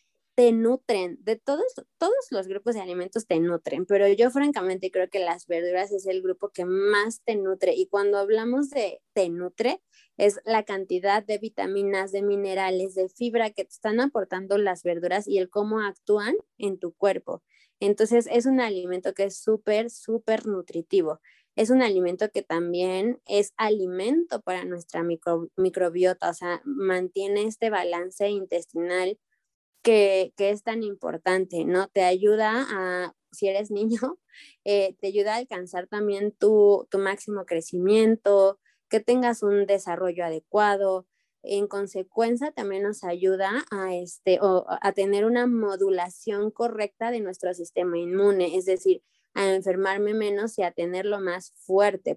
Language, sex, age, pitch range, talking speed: Spanish, female, 20-39, 185-215 Hz, 150 wpm